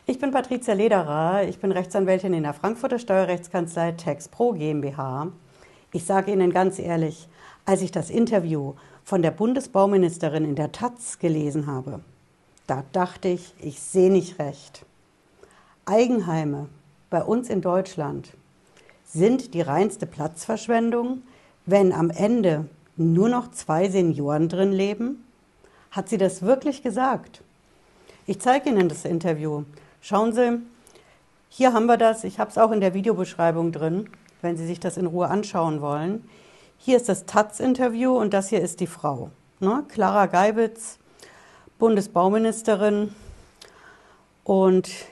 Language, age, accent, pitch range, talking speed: German, 60-79, German, 165-220 Hz, 135 wpm